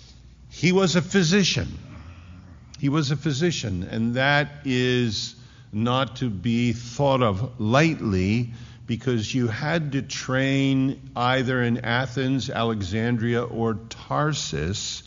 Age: 50-69